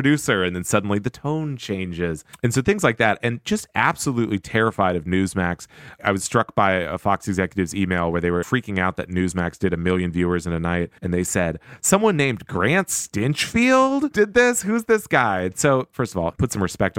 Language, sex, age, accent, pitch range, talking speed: English, male, 30-49, American, 90-120 Hz, 210 wpm